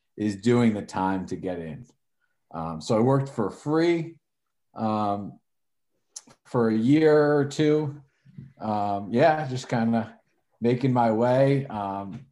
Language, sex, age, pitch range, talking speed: English, male, 40-59, 100-125 Hz, 135 wpm